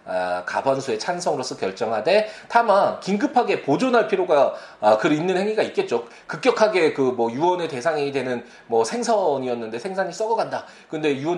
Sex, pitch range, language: male, 120-205 Hz, Korean